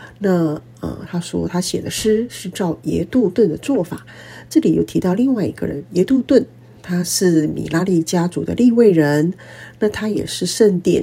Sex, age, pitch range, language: female, 50-69, 145-210 Hz, Chinese